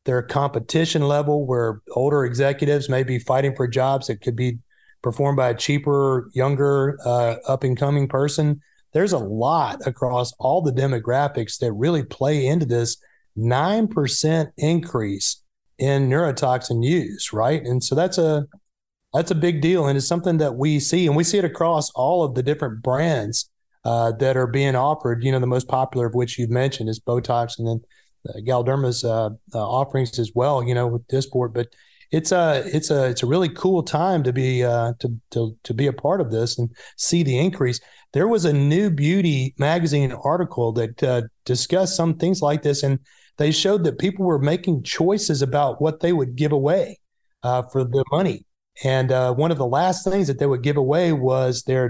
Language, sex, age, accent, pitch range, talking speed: English, male, 30-49, American, 125-155 Hz, 190 wpm